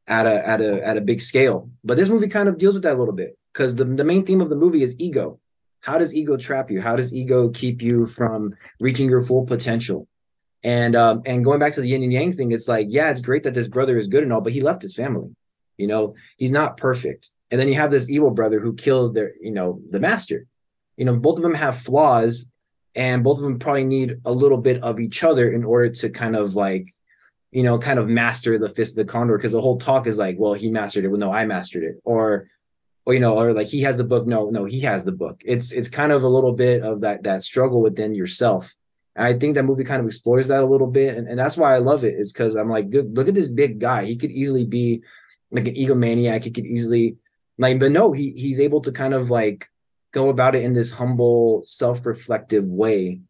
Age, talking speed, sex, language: 20-39, 255 wpm, male, English